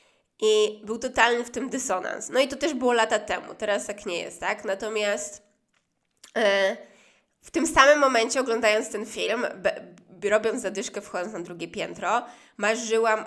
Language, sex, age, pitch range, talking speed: Polish, female, 20-39, 195-240 Hz, 165 wpm